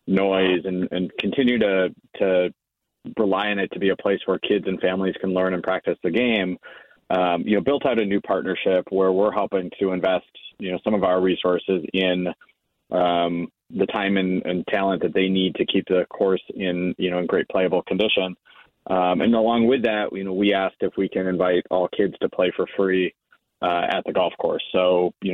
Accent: American